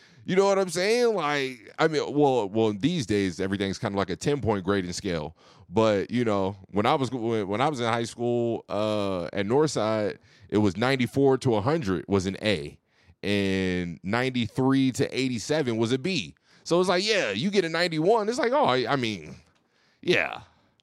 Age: 30-49